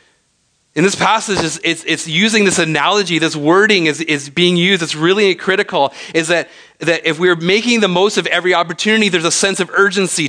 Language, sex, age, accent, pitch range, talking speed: English, male, 30-49, American, 150-190 Hz, 190 wpm